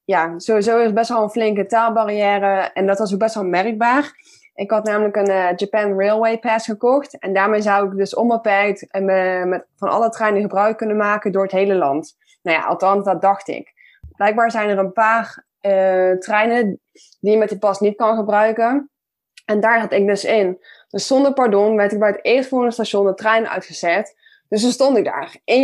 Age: 20-39